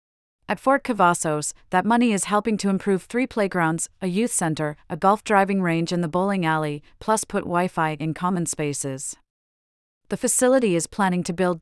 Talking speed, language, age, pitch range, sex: 175 wpm, English, 40-59, 165-200 Hz, female